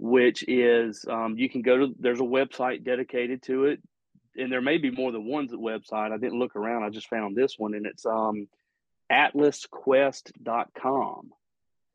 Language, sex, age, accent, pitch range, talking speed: English, male, 40-59, American, 115-135 Hz, 170 wpm